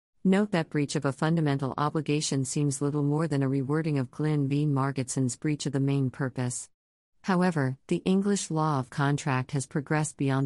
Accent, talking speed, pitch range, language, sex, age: American, 180 wpm, 130-155 Hz, English, female, 50-69